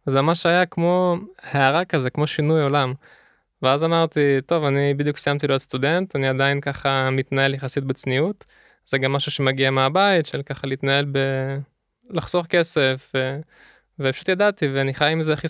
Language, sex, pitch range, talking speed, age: Hebrew, male, 135-170 Hz, 160 wpm, 20-39